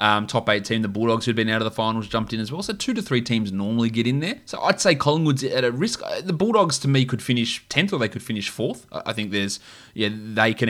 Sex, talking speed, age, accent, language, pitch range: male, 280 wpm, 20-39, Australian, English, 105-125 Hz